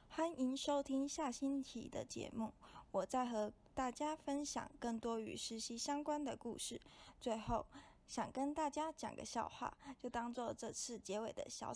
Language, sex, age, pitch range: Chinese, female, 20-39, 230-275 Hz